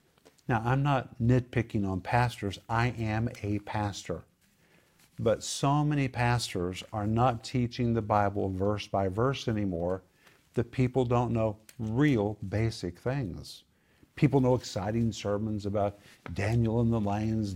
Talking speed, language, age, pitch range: 135 wpm, English, 50-69, 100-125 Hz